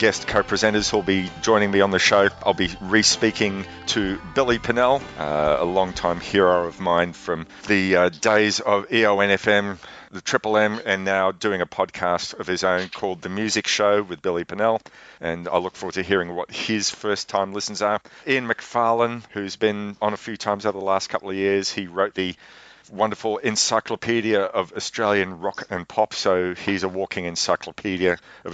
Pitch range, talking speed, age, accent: 90-105 Hz, 185 wpm, 40-59, Australian